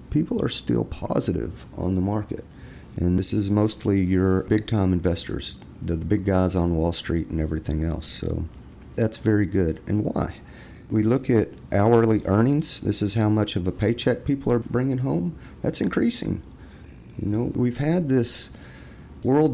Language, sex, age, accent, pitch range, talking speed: English, male, 40-59, American, 90-120 Hz, 165 wpm